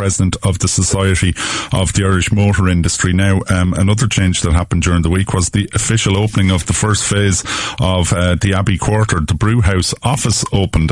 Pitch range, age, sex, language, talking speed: 90-110 Hz, 30-49, male, English, 200 wpm